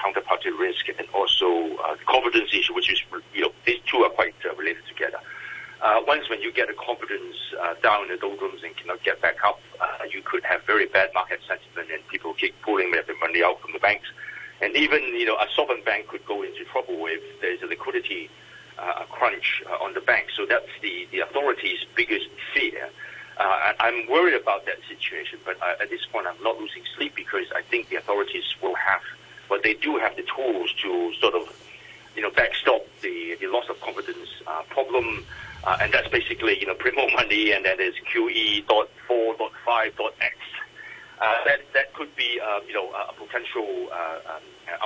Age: 50-69